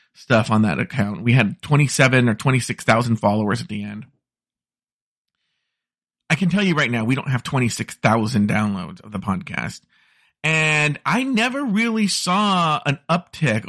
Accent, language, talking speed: American, English, 150 wpm